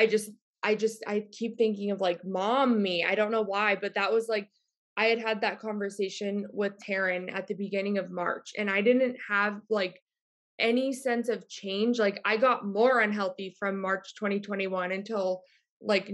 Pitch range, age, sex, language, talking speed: 195-230 Hz, 20-39, female, English, 185 wpm